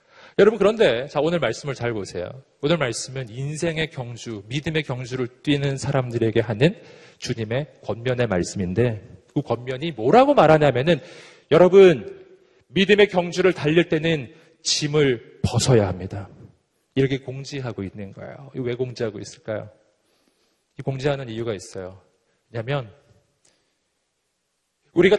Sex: male